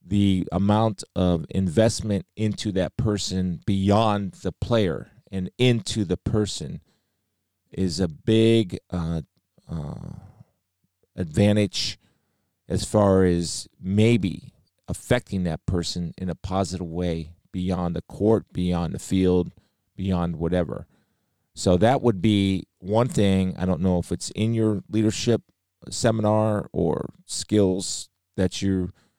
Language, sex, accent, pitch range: English, male, American, 90-105 Hz